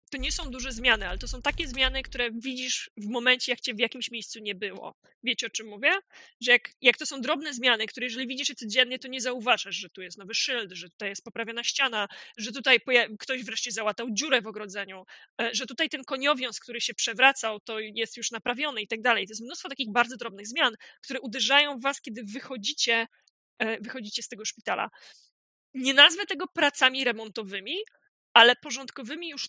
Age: 20-39